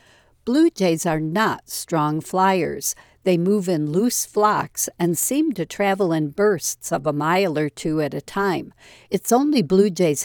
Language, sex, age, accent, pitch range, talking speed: English, female, 60-79, American, 160-210 Hz, 170 wpm